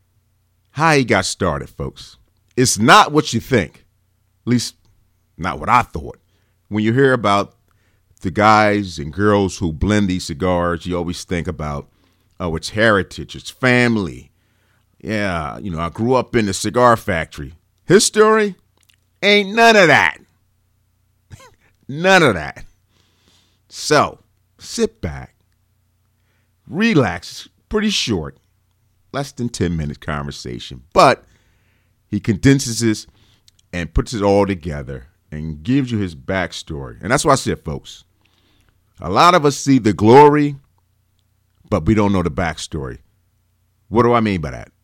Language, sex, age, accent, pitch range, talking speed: English, male, 40-59, American, 90-110 Hz, 140 wpm